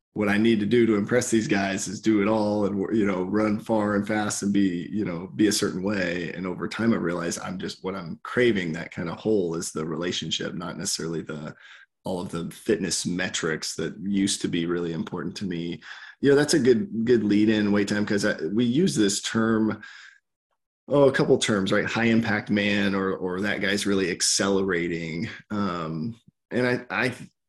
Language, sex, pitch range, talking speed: English, male, 95-115 Hz, 205 wpm